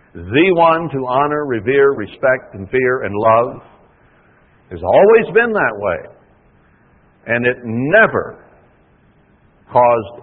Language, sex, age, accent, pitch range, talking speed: English, male, 60-79, American, 100-135 Hz, 110 wpm